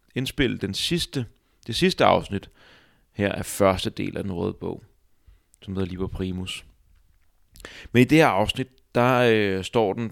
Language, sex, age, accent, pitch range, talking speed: Danish, male, 30-49, native, 95-120 Hz, 155 wpm